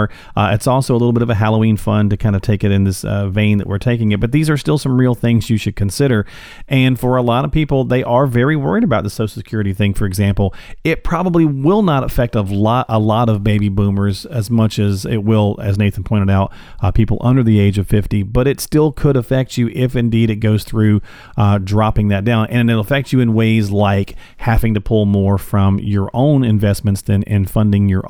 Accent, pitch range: American, 105-130 Hz